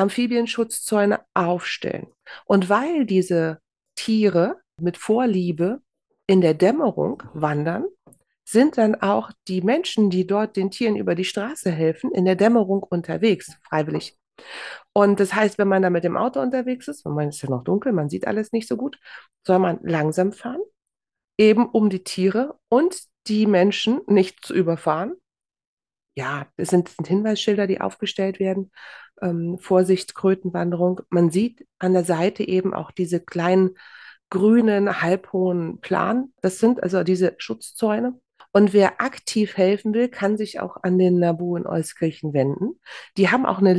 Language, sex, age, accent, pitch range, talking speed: German, female, 40-59, German, 180-220 Hz, 155 wpm